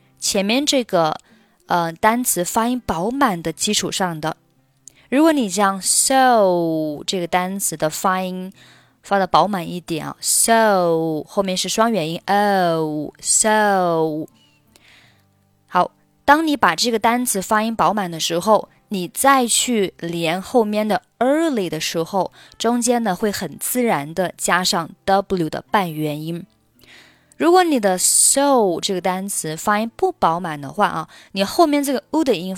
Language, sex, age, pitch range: Chinese, female, 20-39, 165-225 Hz